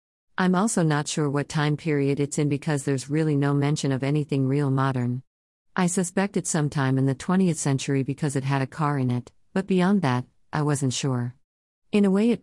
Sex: female